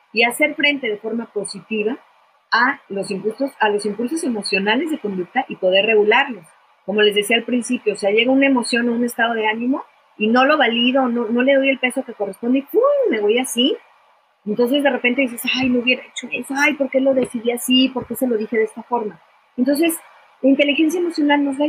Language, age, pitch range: Spanish, 40-59, 215-275 Hz